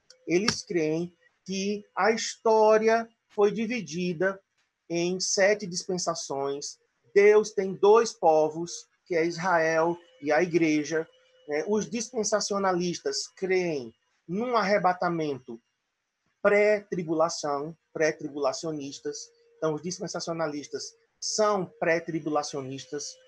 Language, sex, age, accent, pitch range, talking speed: Portuguese, male, 40-59, Brazilian, 160-210 Hz, 80 wpm